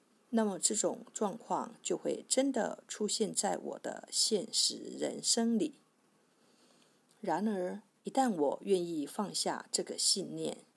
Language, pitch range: Chinese, 205-260 Hz